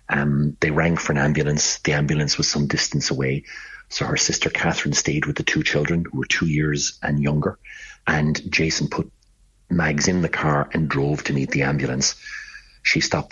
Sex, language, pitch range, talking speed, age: male, English, 75-80 Hz, 190 wpm, 40-59